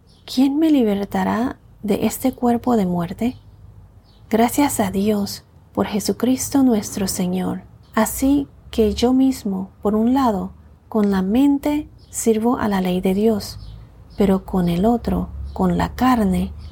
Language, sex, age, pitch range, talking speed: Spanish, female, 40-59, 190-235 Hz, 135 wpm